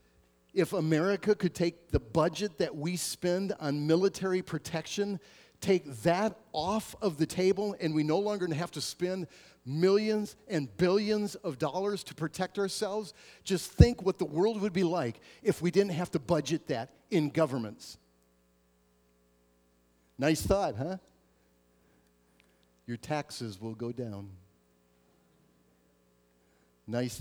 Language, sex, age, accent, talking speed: English, male, 50-69, American, 130 wpm